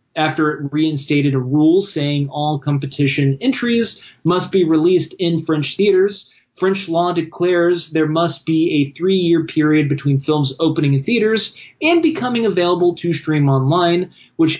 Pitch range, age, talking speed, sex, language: 140-175 Hz, 20-39, 150 wpm, male, English